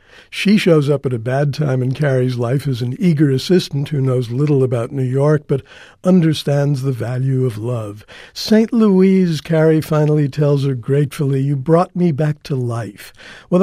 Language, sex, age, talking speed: English, male, 60-79, 175 wpm